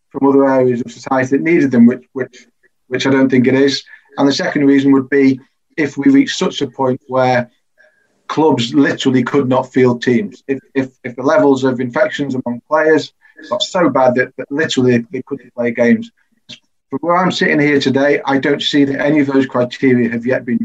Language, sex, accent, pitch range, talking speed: English, male, British, 125-145 Hz, 205 wpm